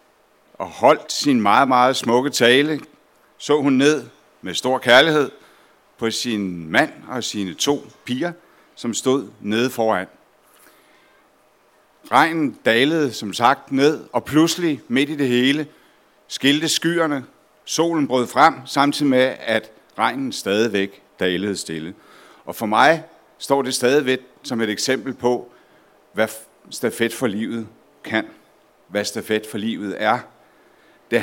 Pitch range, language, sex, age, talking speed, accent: 110-145 Hz, English, male, 60-79, 130 wpm, Danish